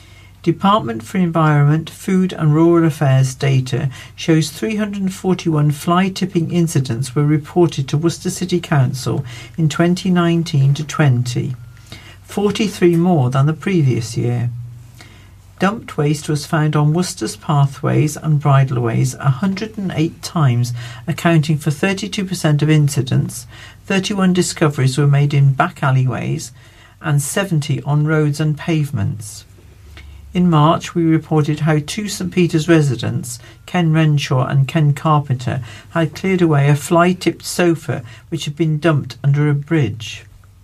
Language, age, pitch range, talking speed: English, 50-69, 125-170 Hz, 120 wpm